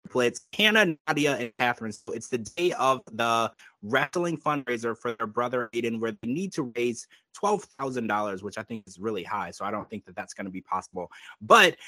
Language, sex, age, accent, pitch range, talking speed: English, male, 20-39, American, 115-165 Hz, 195 wpm